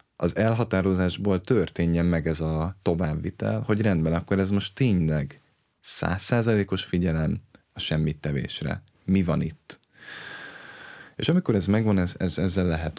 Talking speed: 125 wpm